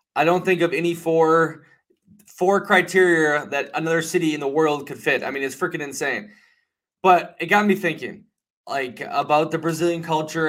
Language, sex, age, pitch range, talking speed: English, male, 20-39, 145-170 Hz, 175 wpm